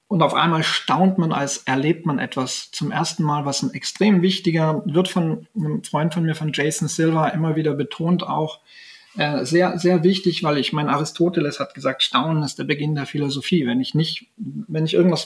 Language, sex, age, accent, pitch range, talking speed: German, male, 40-59, German, 140-175 Hz, 200 wpm